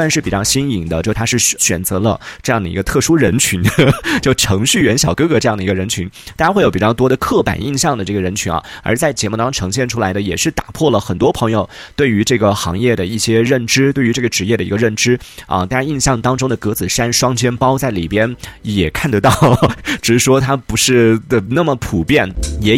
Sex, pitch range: male, 100-130 Hz